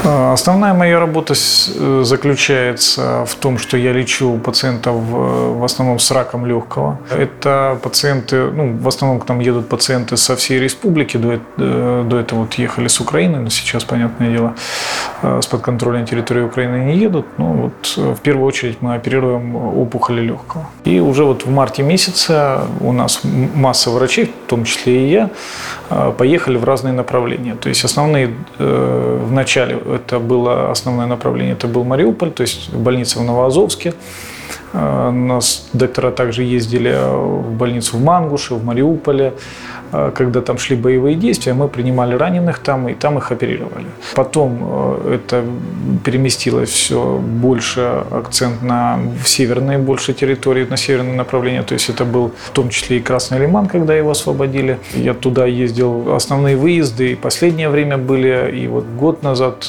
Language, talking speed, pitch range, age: Russian, 150 wpm, 120-135 Hz, 30-49